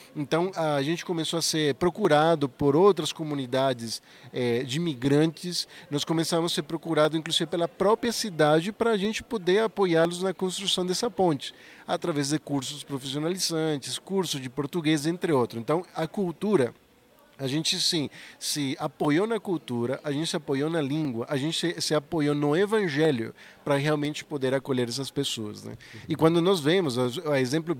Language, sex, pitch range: Portuguese, male, 140-175 Hz